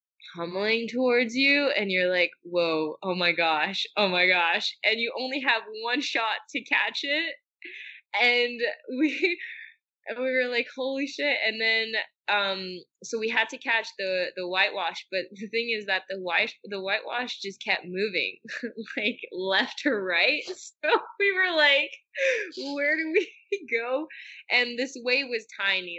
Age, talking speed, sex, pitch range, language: 20-39, 160 wpm, female, 180-240 Hz, English